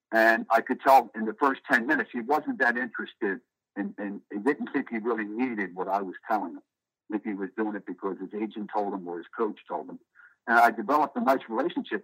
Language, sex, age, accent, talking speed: English, male, 60-79, American, 225 wpm